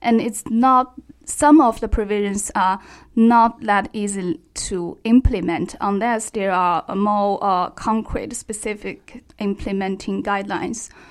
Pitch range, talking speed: 200-240 Hz, 125 wpm